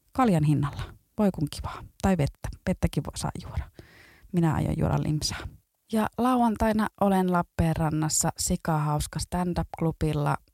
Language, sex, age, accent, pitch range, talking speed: Finnish, female, 30-49, native, 145-175 Hz, 125 wpm